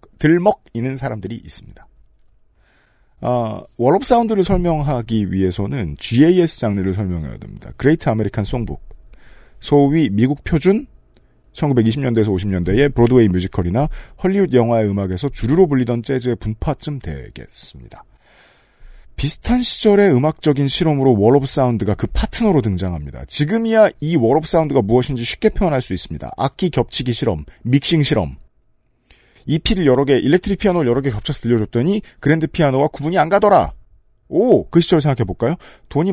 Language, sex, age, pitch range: Korean, male, 40-59, 110-165 Hz